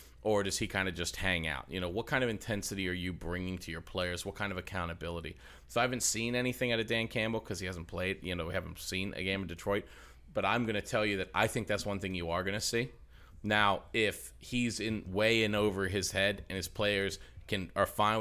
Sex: male